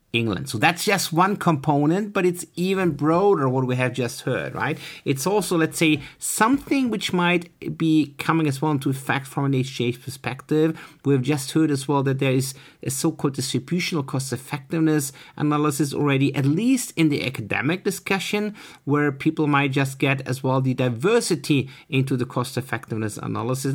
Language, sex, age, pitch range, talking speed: English, male, 50-69, 130-165 Hz, 165 wpm